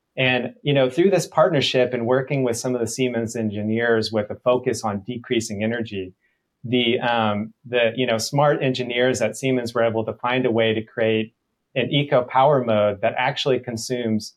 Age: 30-49